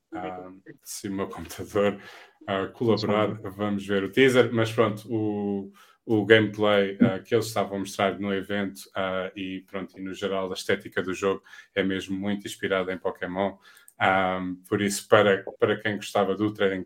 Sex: male